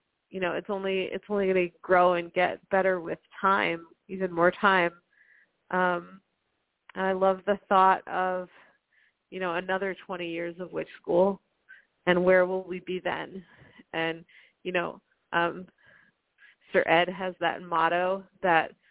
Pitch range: 170-190 Hz